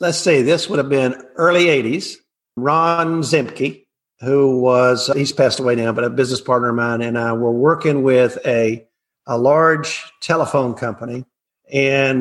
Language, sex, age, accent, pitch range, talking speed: English, male, 50-69, American, 130-155 Hz, 160 wpm